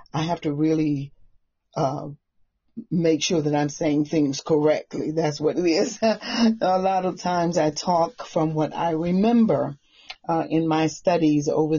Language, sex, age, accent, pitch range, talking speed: English, female, 40-59, American, 150-175 Hz, 160 wpm